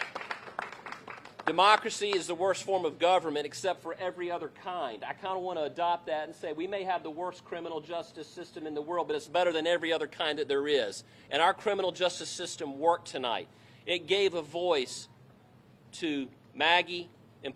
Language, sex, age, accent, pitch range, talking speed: English, male, 40-59, American, 140-180 Hz, 190 wpm